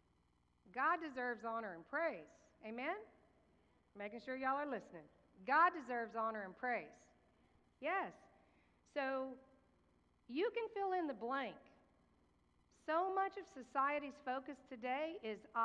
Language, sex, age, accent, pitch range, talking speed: English, female, 50-69, American, 225-280 Hz, 120 wpm